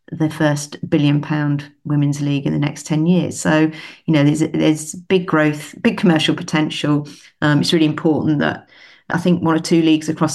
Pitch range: 145-160 Hz